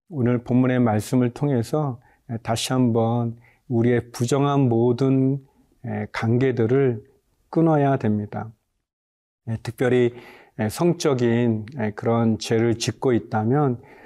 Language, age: Korean, 40-59